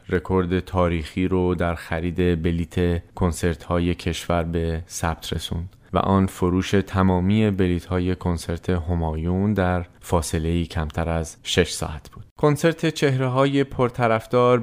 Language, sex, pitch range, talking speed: Persian, male, 85-110 Hz, 115 wpm